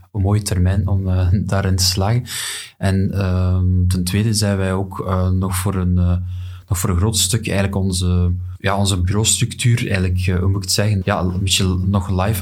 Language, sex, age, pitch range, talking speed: Dutch, male, 20-39, 90-100 Hz, 190 wpm